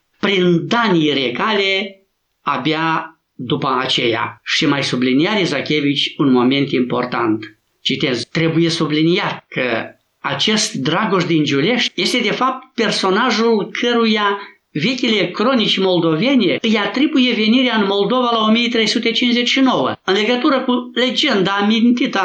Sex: male